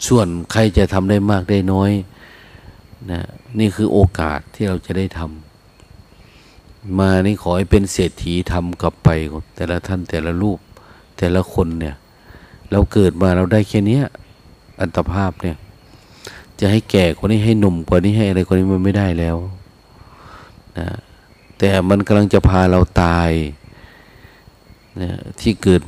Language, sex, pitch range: Thai, male, 85-100 Hz